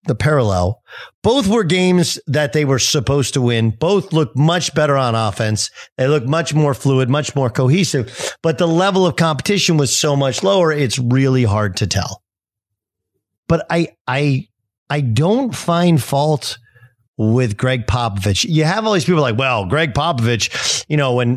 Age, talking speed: 40-59, 170 wpm